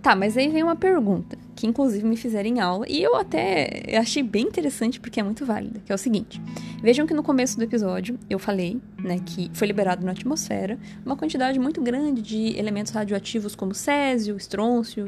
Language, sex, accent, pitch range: Portuguese, female, Brazilian, 195-245 Hz